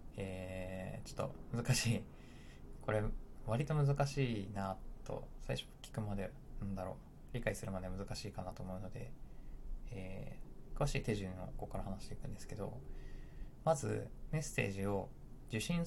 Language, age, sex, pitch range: Japanese, 20-39, male, 95-135 Hz